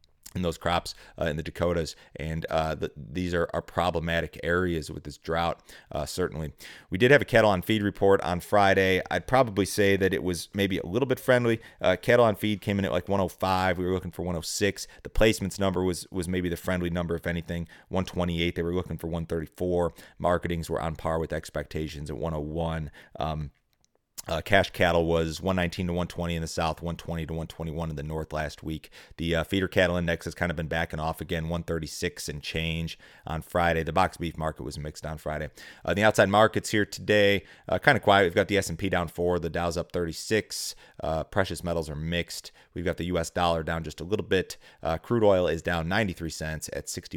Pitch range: 80-95 Hz